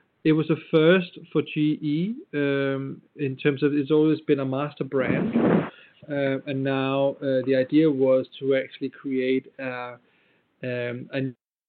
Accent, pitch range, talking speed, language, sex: German, 130-145 Hz, 145 wpm, English, male